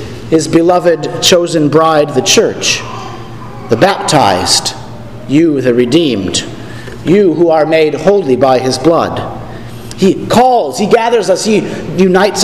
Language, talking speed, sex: English, 125 wpm, male